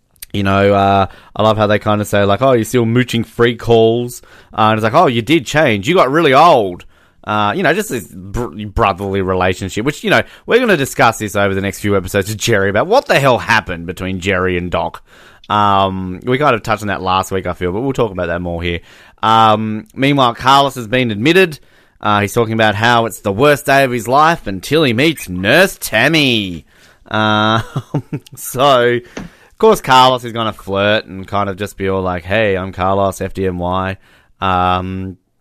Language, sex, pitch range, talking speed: English, male, 100-125 Hz, 205 wpm